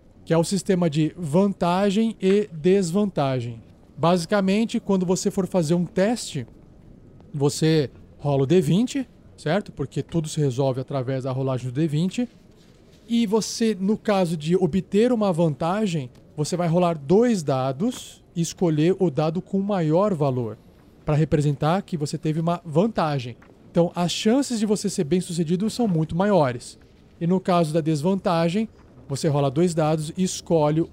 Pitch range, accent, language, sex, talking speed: 150-195 Hz, Brazilian, Portuguese, male, 150 wpm